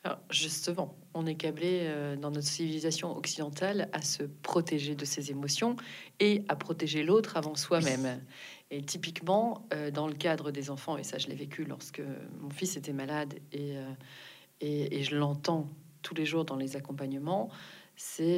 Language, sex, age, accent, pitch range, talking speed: French, female, 40-59, French, 150-185 Hz, 175 wpm